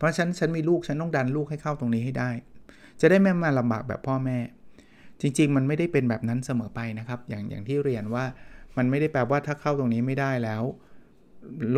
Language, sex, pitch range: Thai, male, 115-145 Hz